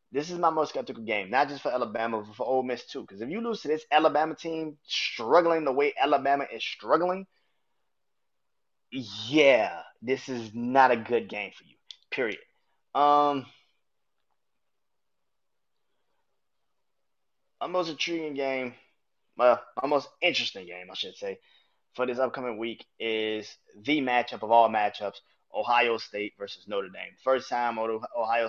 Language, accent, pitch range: English, American, 110-145 Hz